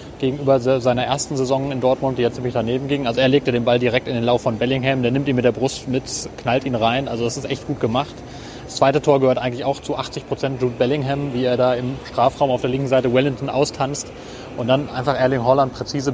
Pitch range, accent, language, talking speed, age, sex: 125-140 Hz, German, German, 245 wpm, 30-49, male